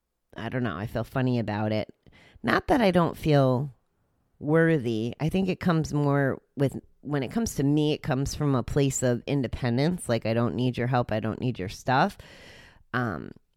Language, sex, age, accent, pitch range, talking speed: English, female, 30-49, American, 105-140 Hz, 195 wpm